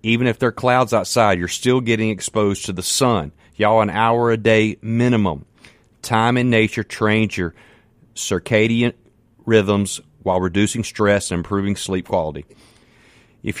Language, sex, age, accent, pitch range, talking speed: English, male, 40-59, American, 90-115 Hz, 150 wpm